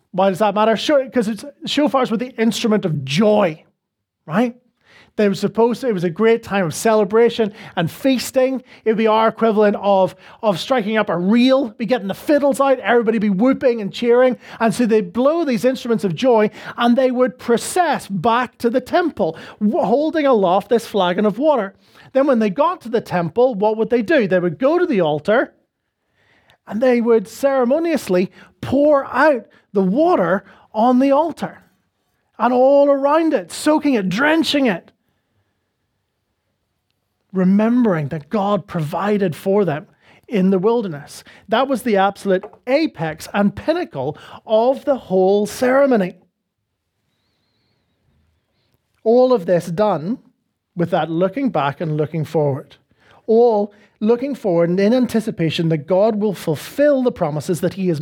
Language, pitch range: English, 180-250 Hz